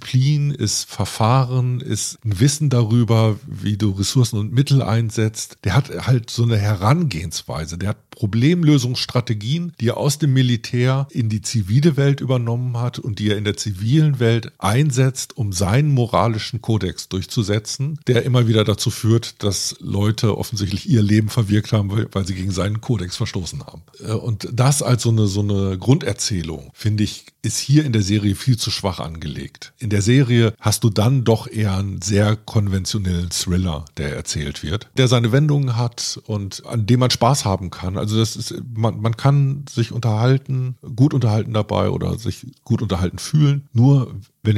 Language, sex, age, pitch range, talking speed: German, male, 50-69, 100-125 Hz, 170 wpm